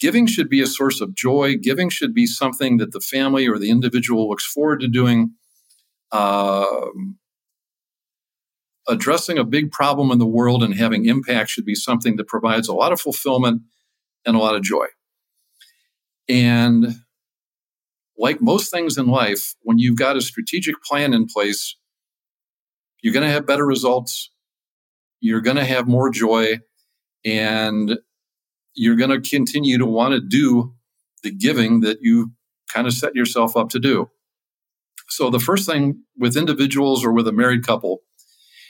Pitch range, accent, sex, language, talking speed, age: 115-140 Hz, American, male, English, 160 wpm, 50-69